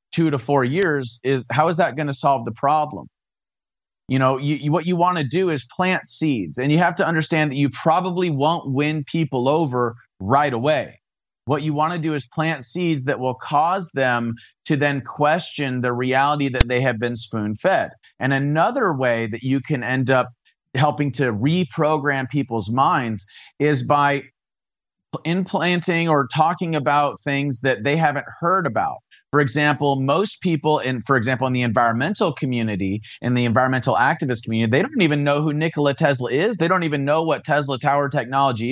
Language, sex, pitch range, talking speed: English, male, 130-160 Hz, 180 wpm